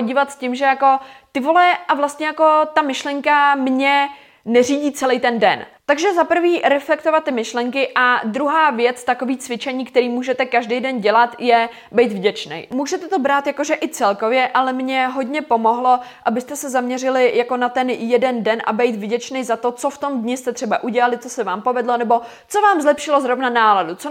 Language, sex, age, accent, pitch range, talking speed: Czech, female, 20-39, native, 235-280 Hz, 190 wpm